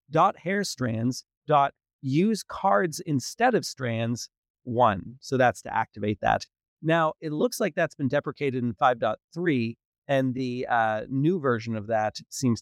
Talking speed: 150 wpm